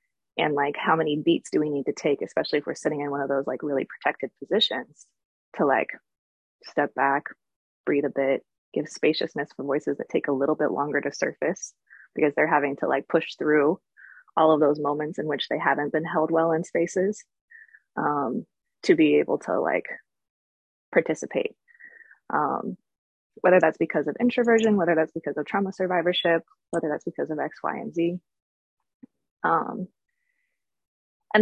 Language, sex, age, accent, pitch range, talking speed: English, female, 20-39, American, 155-225 Hz, 170 wpm